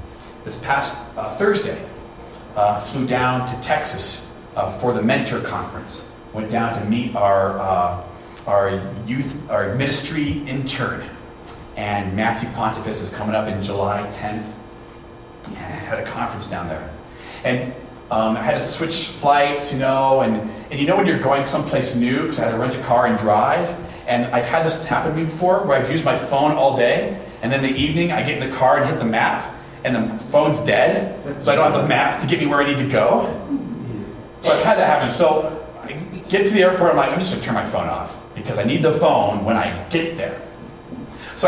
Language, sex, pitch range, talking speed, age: English, male, 110-140 Hz, 210 wpm, 30-49